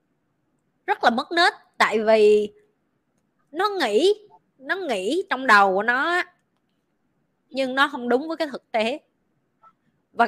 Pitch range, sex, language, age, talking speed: 210-285 Hz, female, Vietnamese, 20-39, 135 wpm